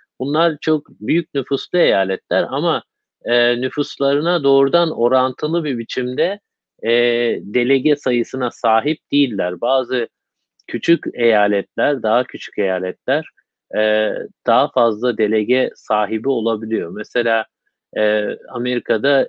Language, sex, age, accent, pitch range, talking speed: Turkish, male, 50-69, native, 110-140 Hz, 100 wpm